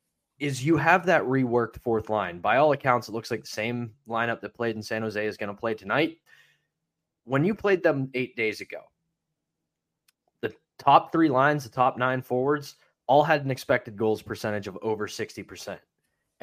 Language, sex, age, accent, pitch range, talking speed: English, male, 20-39, American, 110-135 Hz, 185 wpm